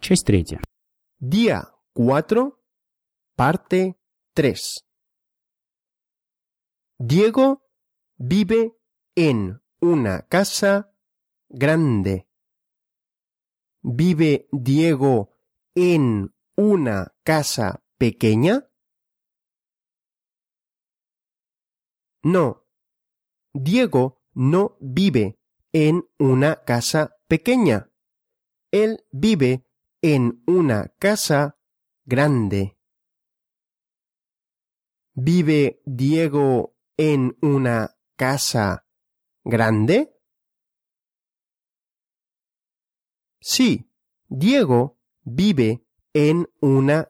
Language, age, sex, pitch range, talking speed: Russian, 40-59, male, 120-180 Hz, 50 wpm